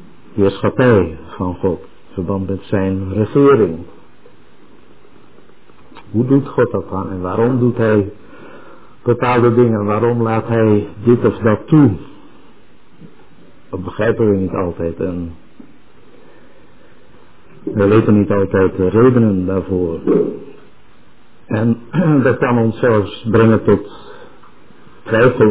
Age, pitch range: 60-79, 100-115 Hz